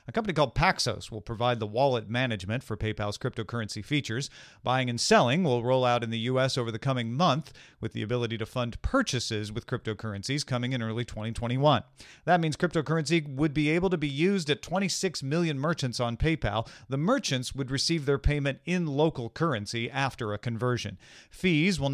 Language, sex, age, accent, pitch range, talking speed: English, male, 40-59, American, 115-155 Hz, 185 wpm